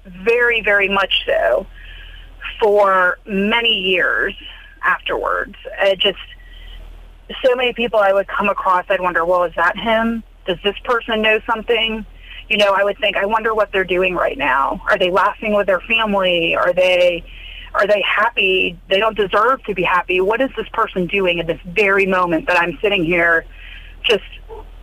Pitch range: 185-245 Hz